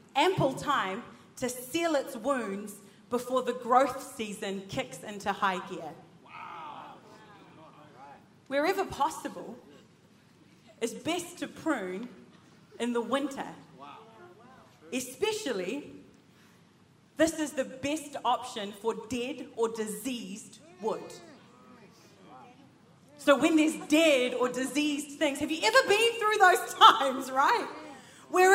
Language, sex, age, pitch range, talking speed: English, female, 30-49, 255-375 Hz, 105 wpm